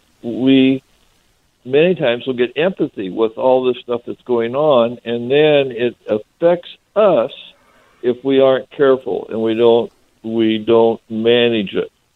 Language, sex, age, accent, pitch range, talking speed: English, male, 60-79, American, 115-135 Hz, 145 wpm